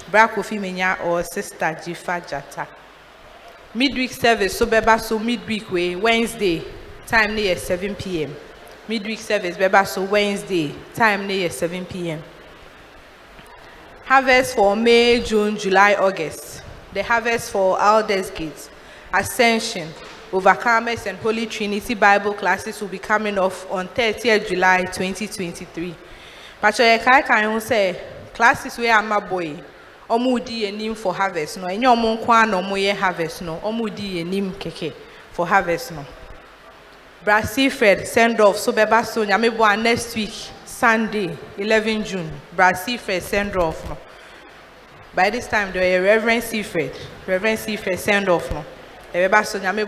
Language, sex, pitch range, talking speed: English, female, 185-225 Hz, 125 wpm